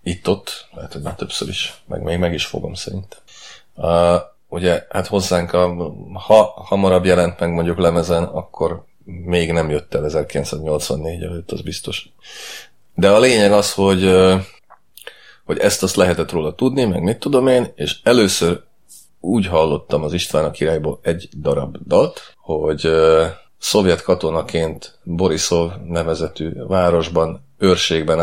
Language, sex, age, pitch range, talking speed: Hungarian, male, 30-49, 80-90 Hz, 140 wpm